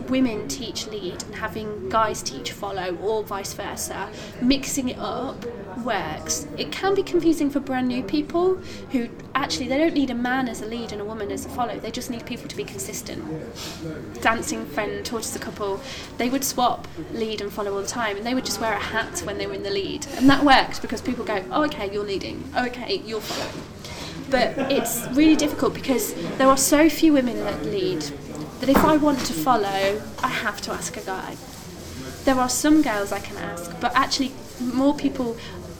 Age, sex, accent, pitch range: 20-39, female, British, 220-285 Hz